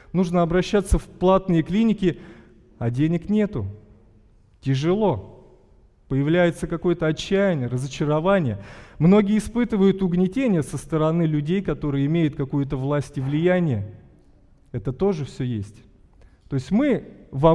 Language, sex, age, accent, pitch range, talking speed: Russian, male, 20-39, native, 140-190 Hz, 115 wpm